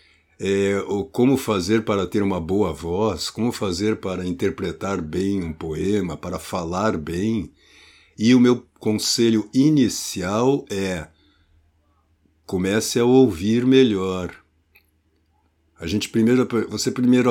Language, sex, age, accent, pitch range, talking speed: Portuguese, male, 60-79, Brazilian, 85-120 Hz, 100 wpm